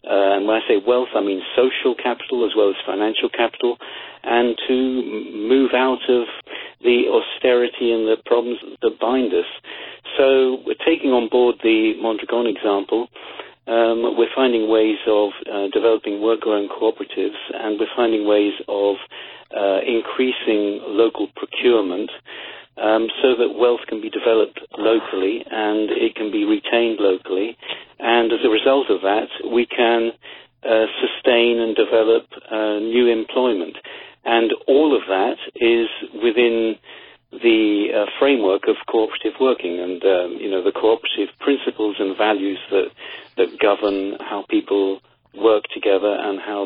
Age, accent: 50-69, British